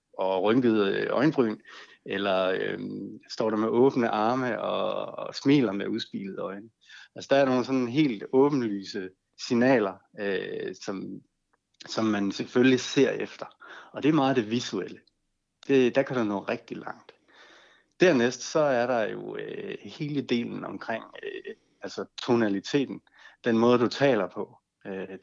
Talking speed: 145 wpm